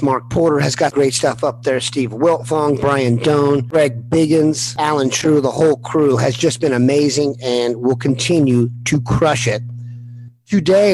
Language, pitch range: English, 120-160 Hz